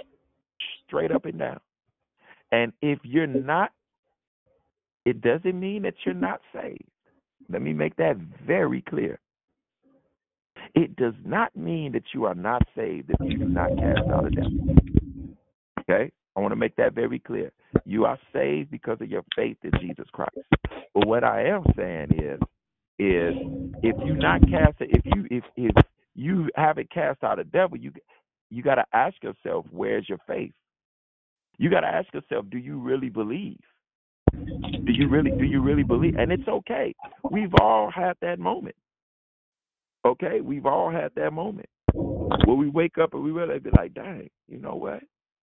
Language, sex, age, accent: English, male, 50-69, American